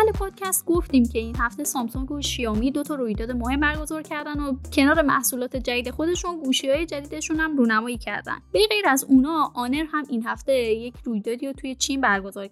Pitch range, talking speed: 225-300 Hz, 185 wpm